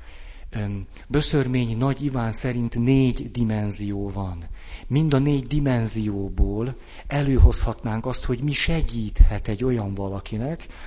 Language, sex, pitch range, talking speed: Hungarian, male, 105-125 Hz, 105 wpm